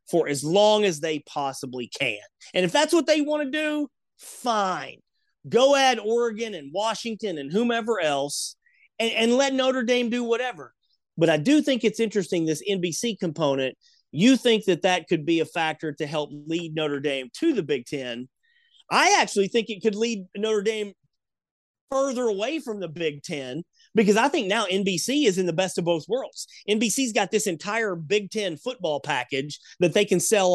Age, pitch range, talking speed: 30-49, 165-230 Hz, 185 wpm